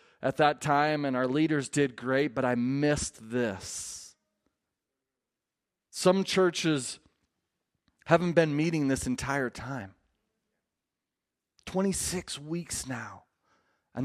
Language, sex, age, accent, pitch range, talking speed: English, male, 30-49, American, 135-165 Hz, 105 wpm